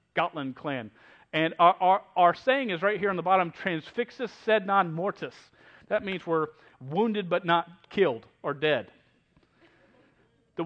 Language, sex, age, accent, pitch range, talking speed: English, male, 40-59, American, 150-205 Hz, 150 wpm